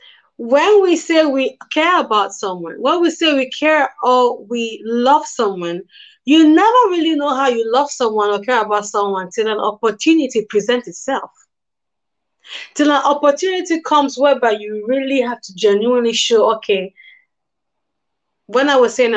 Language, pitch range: English, 205-275 Hz